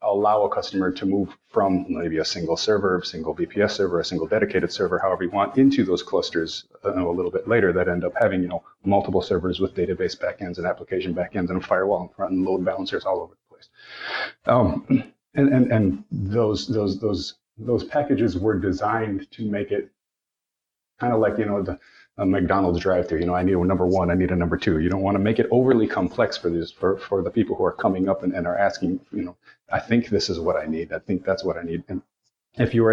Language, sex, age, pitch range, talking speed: English, male, 30-49, 90-105 Hz, 240 wpm